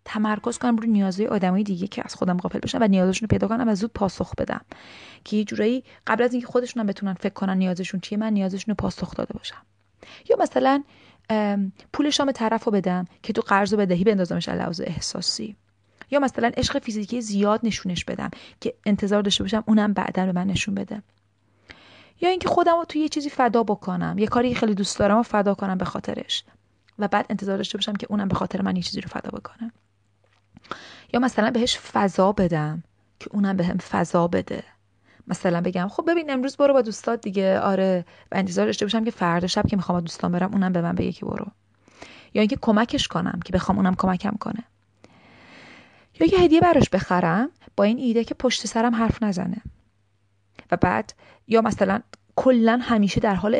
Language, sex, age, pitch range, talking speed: Persian, female, 30-49, 185-230 Hz, 195 wpm